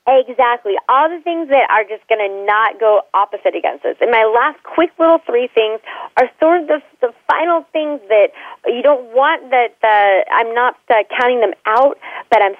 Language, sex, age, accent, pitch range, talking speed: English, female, 30-49, American, 195-285 Hz, 200 wpm